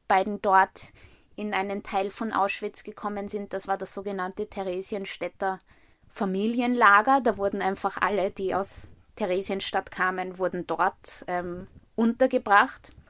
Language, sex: German, female